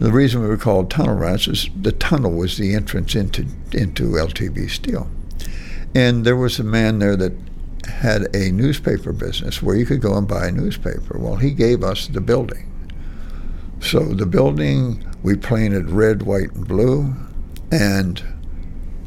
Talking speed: 165 wpm